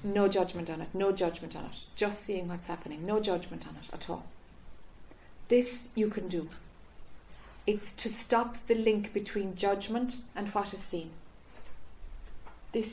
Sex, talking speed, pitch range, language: female, 160 wpm, 175-215 Hz, English